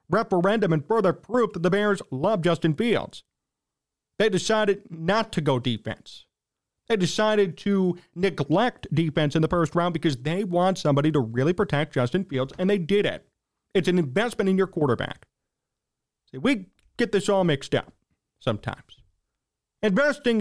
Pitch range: 155-200 Hz